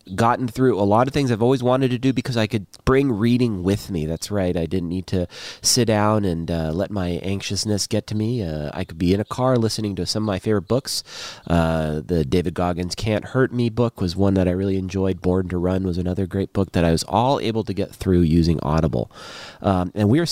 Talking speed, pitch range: 245 wpm, 95-130 Hz